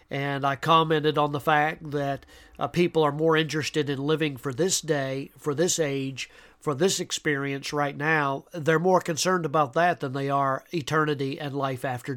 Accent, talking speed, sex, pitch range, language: American, 180 wpm, male, 145-170 Hz, English